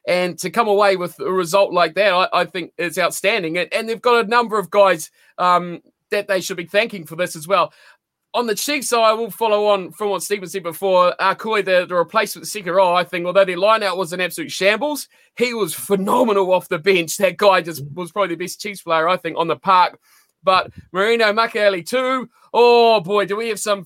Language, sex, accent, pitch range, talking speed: English, male, Australian, 180-225 Hz, 230 wpm